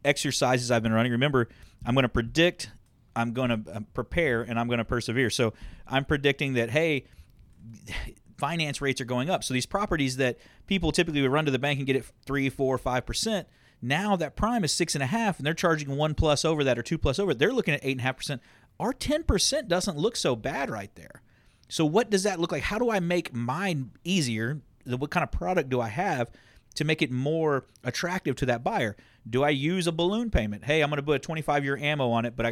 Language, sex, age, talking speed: English, male, 40-59, 230 wpm